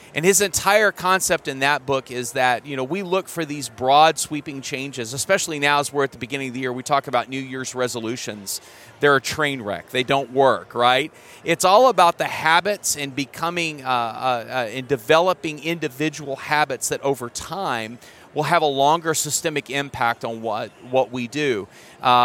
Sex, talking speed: male, 190 wpm